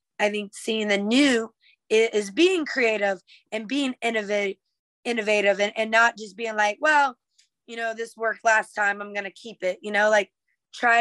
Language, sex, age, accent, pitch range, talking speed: English, female, 20-39, American, 215-255 Hz, 185 wpm